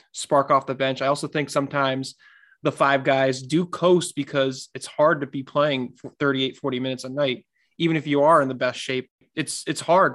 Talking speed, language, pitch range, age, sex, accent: 215 wpm, English, 130-155 Hz, 20-39, male, American